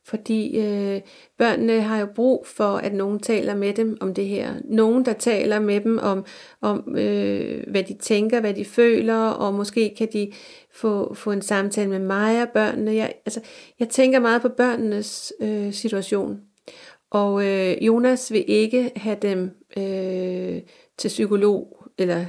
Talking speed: 165 wpm